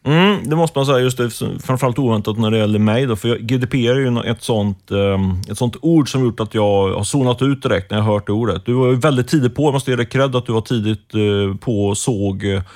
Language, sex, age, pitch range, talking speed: Swedish, male, 30-49, 100-130 Hz, 235 wpm